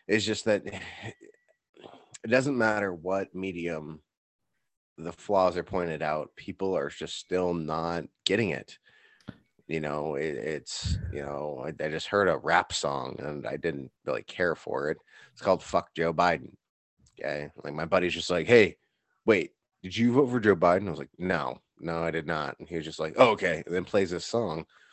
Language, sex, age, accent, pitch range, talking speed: English, male, 30-49, American, 80-105 Hz, 190 wpm